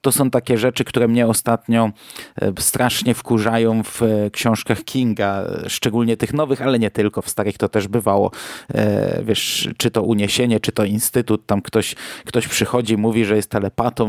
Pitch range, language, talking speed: 110-125 Hz, Polish, 160 wpm